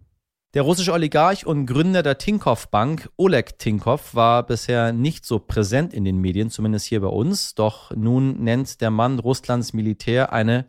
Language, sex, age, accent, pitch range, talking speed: German, male, 30-49, German, 110-140 Hz, 165 wpm